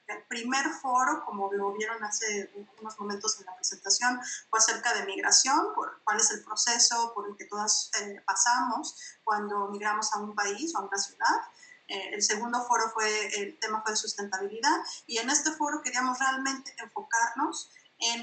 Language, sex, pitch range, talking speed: Polish, female, 205-250 Hz, 170 wpm